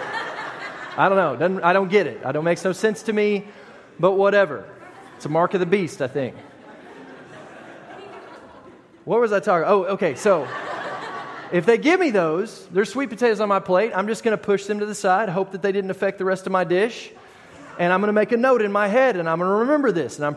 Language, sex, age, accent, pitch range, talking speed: English, male, 30-49, American, 175-225 Hz, 225 wpm